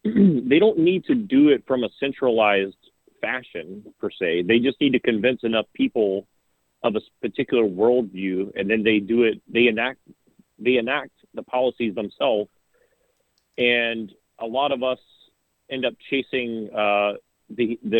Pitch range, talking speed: 105-130 Hz, 145 wpm